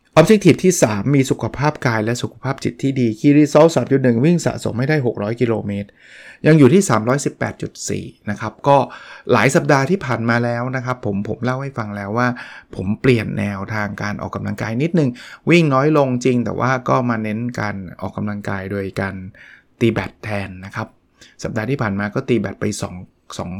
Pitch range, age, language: 105-135 Hz, 20-39, Thai